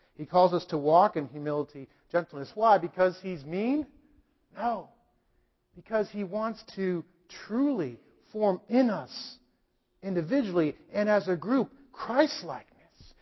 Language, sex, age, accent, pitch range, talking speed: English, male, 50-69, American, 150-225 Hz, 125 wpm